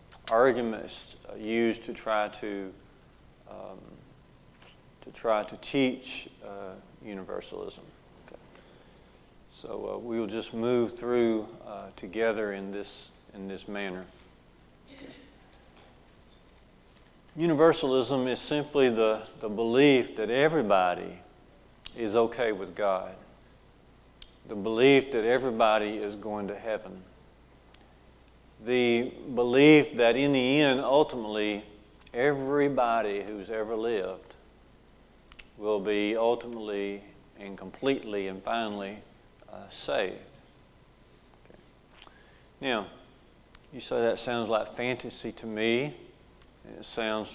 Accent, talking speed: American, 100 wpm